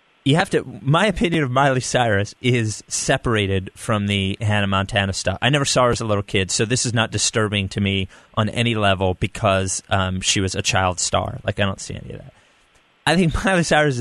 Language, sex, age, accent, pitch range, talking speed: English, male, 30-49, American, 110-155 Hz, 220 wpm